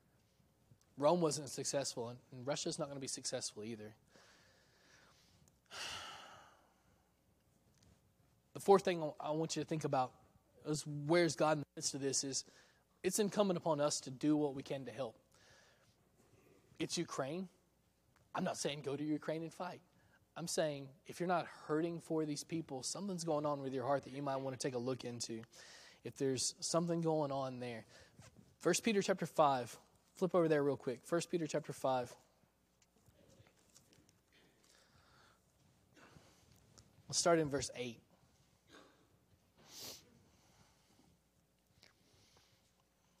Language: English